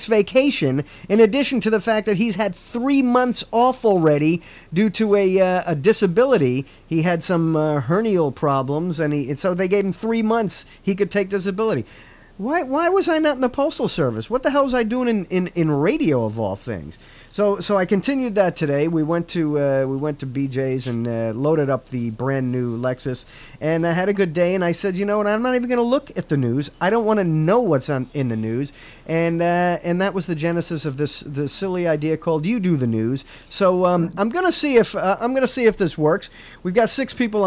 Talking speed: 240 wpm